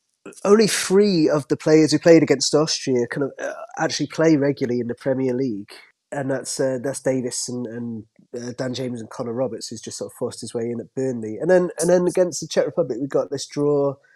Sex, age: male, 20-39